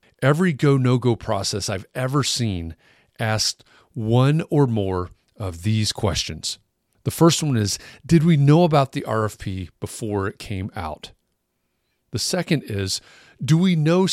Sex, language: male, English